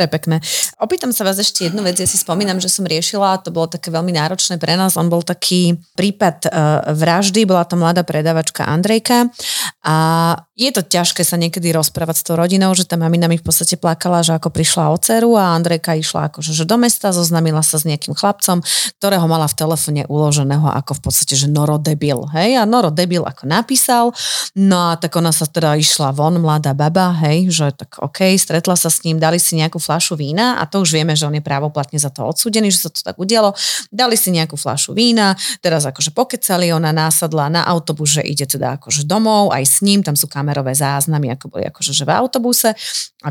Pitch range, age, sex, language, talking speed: 155-190 Hz, 30-49, female, Slovak, 205 wpm